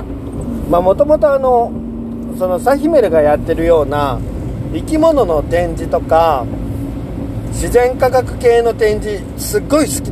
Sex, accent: male, native